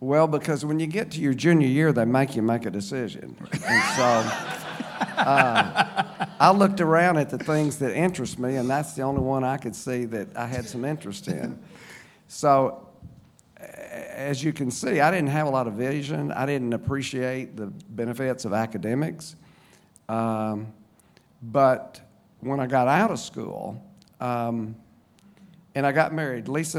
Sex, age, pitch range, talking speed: male, 50-69, 115-145 Hz, 165 wpm